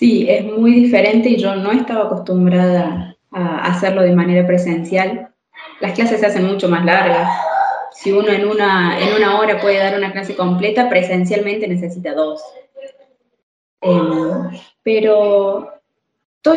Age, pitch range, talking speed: 20-39, 195-270 Hz, 140 wpm